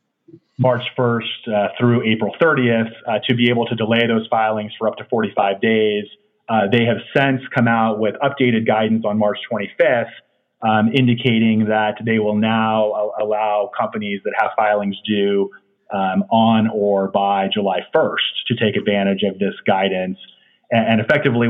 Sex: male